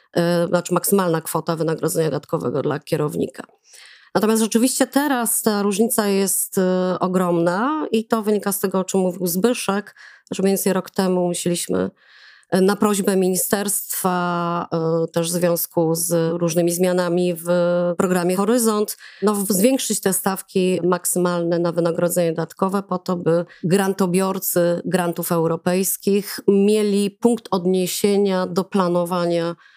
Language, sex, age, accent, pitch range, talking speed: Polish, female, 30-49, native, 170-195 Hz, 125 wpm